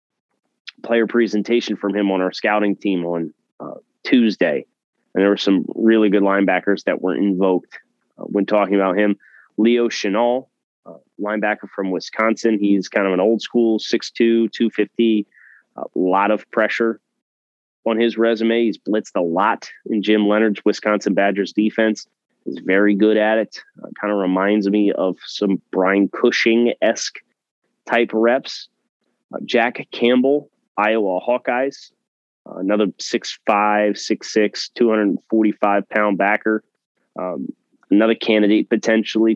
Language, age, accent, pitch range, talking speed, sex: English, 20-39, American, 100-115 Hz, 135 wpm, male